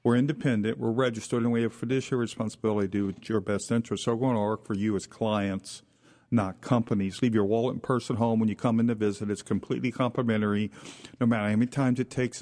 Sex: male